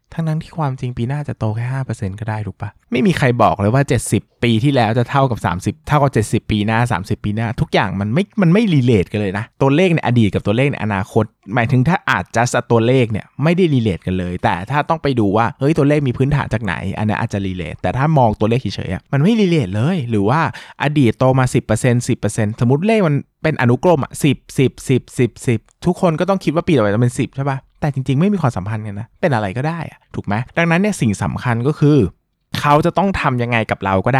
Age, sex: 20-39, male